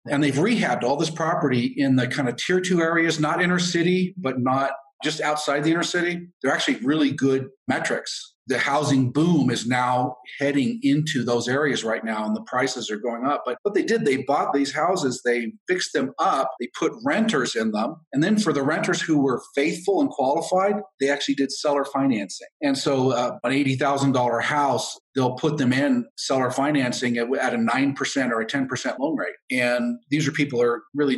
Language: English